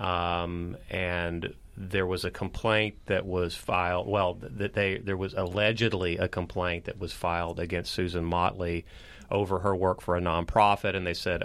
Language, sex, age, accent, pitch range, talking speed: English, male, 30-49, American, 85-95 Hz, 170 wpm